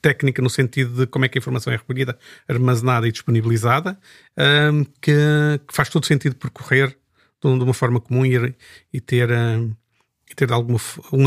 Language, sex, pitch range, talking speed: Portuguese, male, 125-145 Hz, 180 wpm